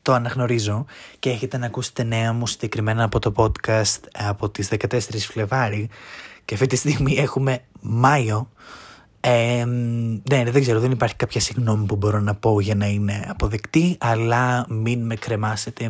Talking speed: 160 wpm